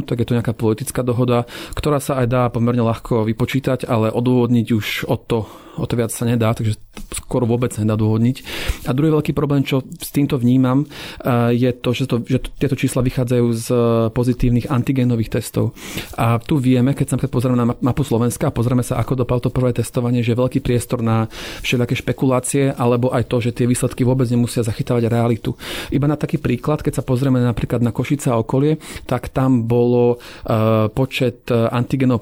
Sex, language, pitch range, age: male, Slovak, 120-135 Hz, 40-59